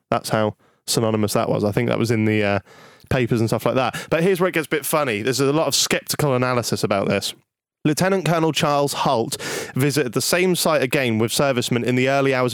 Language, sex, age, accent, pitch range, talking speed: English, male, 20-39, British, 120-150 Hz, 230 wpm